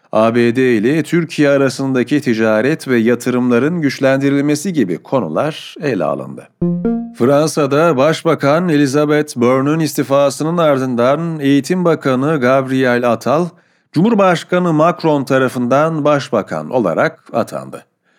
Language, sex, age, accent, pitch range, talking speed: Turkish, male, 40-59, native, 130-165 Hz, 90 wpm